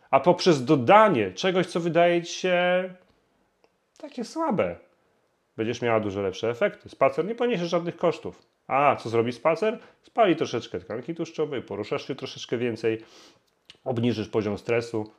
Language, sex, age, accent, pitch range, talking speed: Polish, male, 30-49, native, 110-160 Hz, 140 wpm